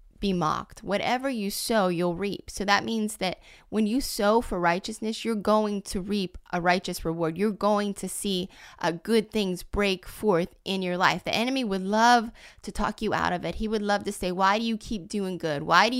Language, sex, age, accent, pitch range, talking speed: English, female, 20-39, American, 185-220 Hz, 220 wpm